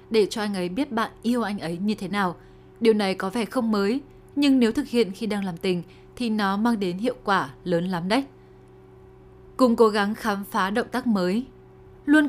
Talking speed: 215 wpm